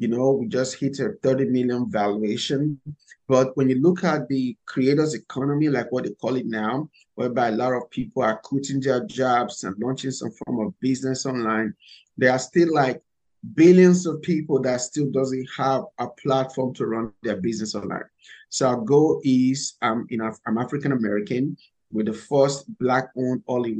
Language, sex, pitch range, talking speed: English, male, 120-135 Hz, 180 wpm